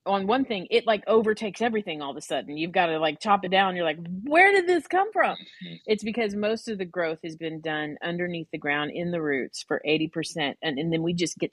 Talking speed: 250 wpm